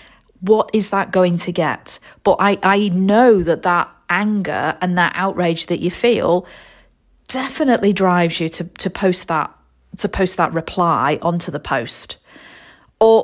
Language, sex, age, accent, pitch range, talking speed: English, female, 40-59, British, 175-215 Hz, 155 wpm